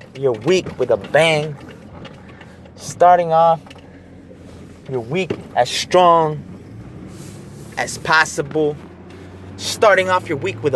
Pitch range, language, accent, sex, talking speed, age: 115-180 Hz, English, American, male, 100 wpm, 20-39